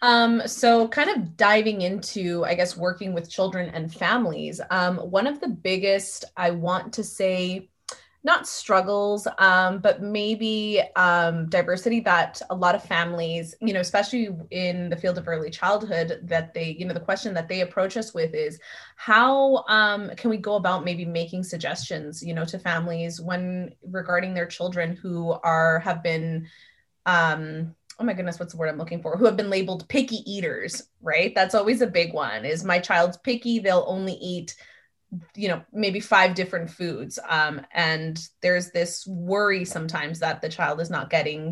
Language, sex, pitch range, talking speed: English, female, 165-200 Hz, 180 wpm